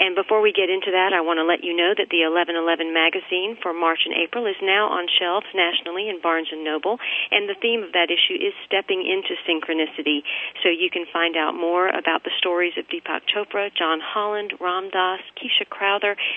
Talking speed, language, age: 210 wpm, English, 40-59